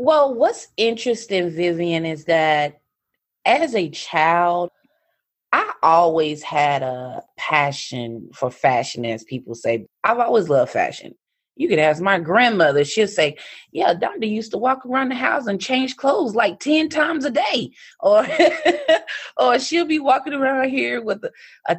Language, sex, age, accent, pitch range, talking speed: English, female, 30-49, American, 160-255 Hz, 155 wpm